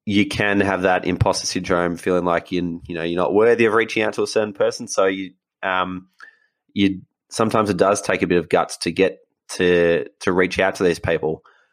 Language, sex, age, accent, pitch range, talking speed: English, male, 20-39, Australian, 85-95 Hz, 215 wpm